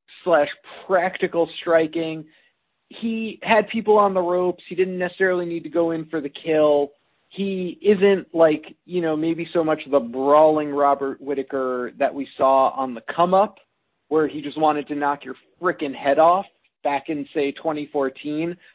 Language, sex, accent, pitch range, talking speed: English, male, American, 130-170 Hz, 165 wpm